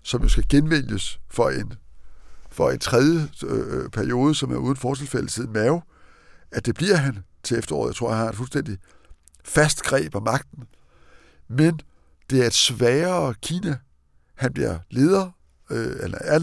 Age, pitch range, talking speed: 60-79, 105-155 Hz, 155 wpm